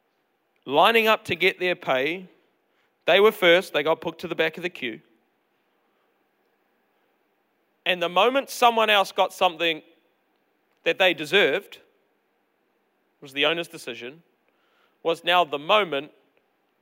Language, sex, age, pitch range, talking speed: English, male, 40-59, 140-220 Hz, 130 wpm